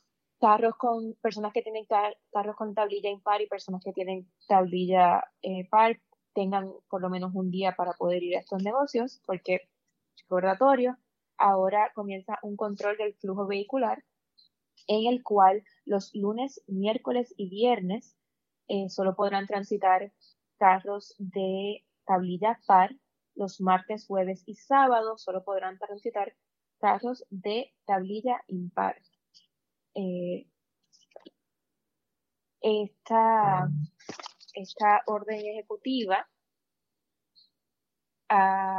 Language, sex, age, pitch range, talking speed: Spanish, female, 20-39, 190-220 Hz, 110 wpm